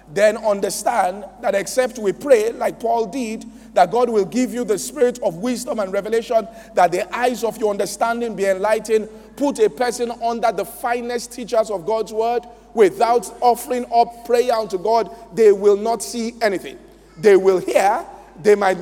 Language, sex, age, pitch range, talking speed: English, male, 40-59, 200-245 Hz, 170 wpm